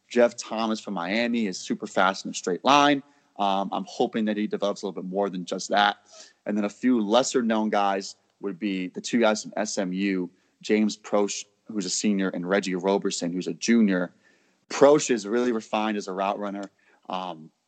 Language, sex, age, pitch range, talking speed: English, male, 30-49, 95-110 Hz, 195 wpm